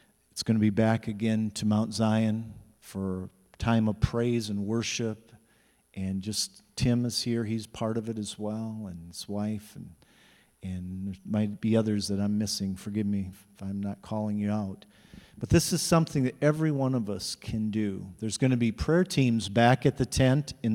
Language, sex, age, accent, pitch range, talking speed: English, male, 50-69, American, 110-130 Hz, 195 wpm